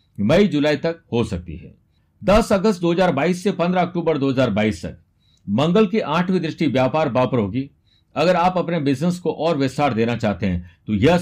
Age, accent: 60-79, native